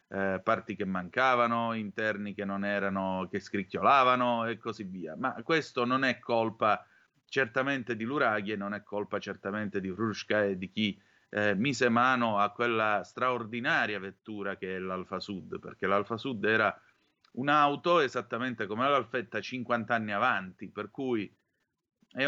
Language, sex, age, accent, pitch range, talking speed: Italian, male, 30-49, native, 110-155 Hz, 150 wpm